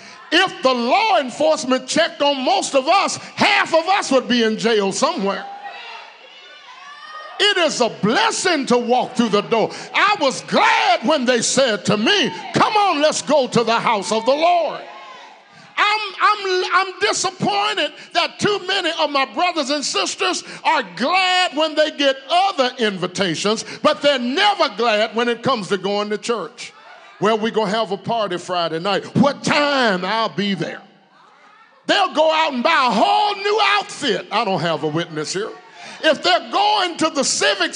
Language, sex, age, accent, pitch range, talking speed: English, male, 50-69, American, 230-360 Hz, 175 wpm